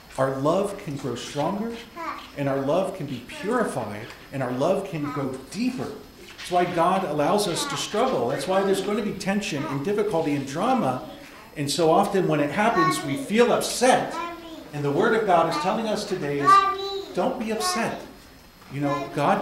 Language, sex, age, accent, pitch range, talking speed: English, male, 40-59, American, 145-215 Hz, 185 wpm